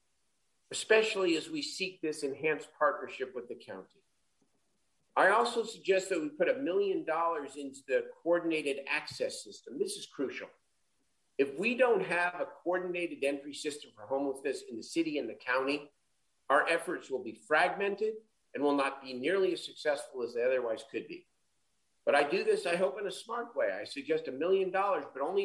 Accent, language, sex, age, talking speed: American, English, male, 50-69, 180 wpm